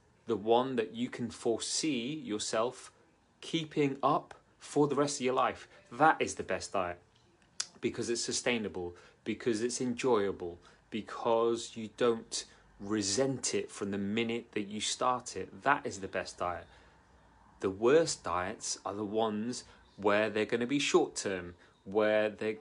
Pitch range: 100-125 Hz